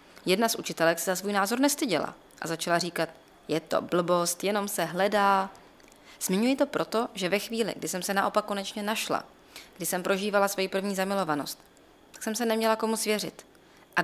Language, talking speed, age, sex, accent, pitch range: Czech, 180 wpm, 20-39, female, native, 170-215 Hz